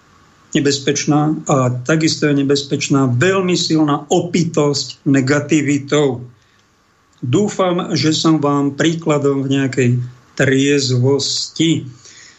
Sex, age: male, 50-69